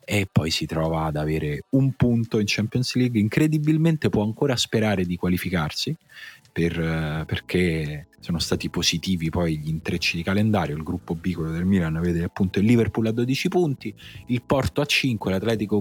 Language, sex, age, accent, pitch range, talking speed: Italian, male, 30-49, native, 90-110 Hz, 165 wpm